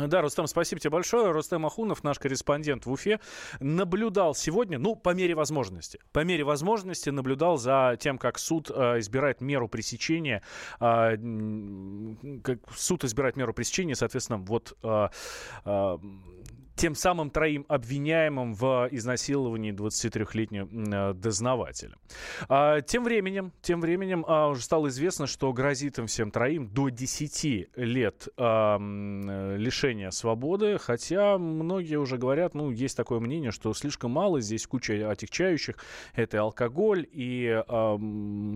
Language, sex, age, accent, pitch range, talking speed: Russian, male, 20-39, native, 115-155 Hz, 125 wpm